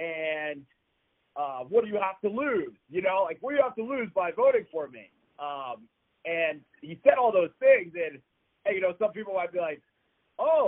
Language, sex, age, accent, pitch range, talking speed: English, male, 40-59, American, 135-215 Hz, 215 wpm